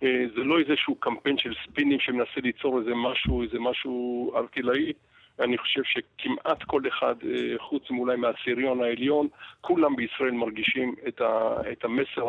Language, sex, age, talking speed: English, male, 50-69, 135 wpm